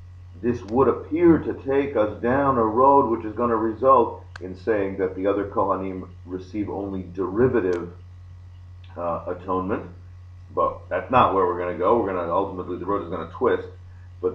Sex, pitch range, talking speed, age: male, 90-110 Hz, 185 wpm, 40-59